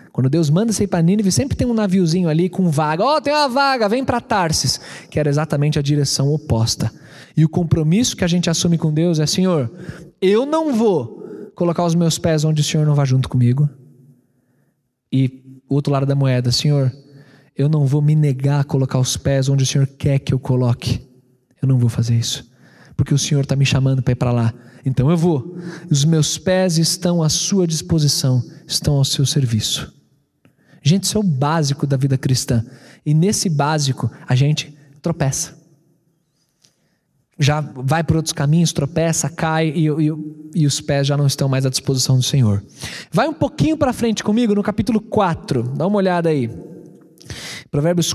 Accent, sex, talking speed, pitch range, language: Brazilian, male, 190 wpm, 135-175 Hz, Portuguese